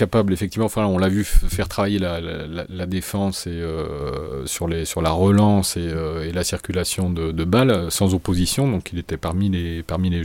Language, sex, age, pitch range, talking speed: French, male, 30-49, 85-110 Hz, 210 wpm